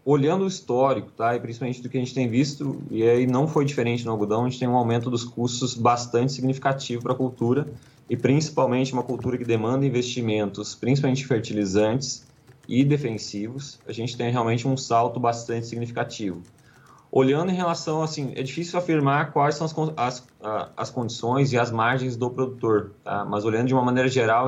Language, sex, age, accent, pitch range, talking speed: Portuguese, male, 20-39, Brazilian, 120-135 Hz, 185 wpm